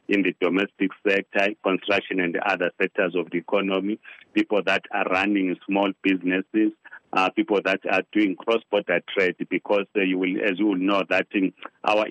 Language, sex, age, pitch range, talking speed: English, male, 40-59, 95-105 Hz, 180 wpm